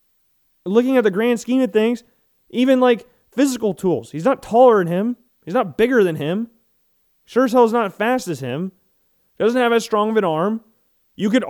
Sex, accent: male, American